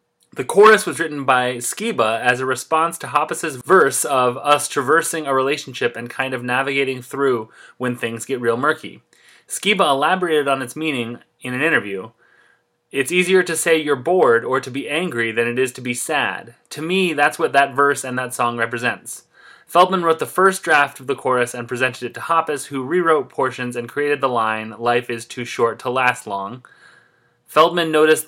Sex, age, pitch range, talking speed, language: male, 30-49, 125-155 Hz, 190 wpm, English